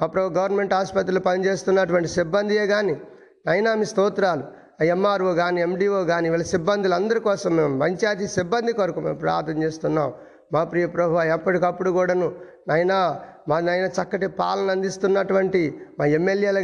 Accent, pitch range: native, 175-205 Hz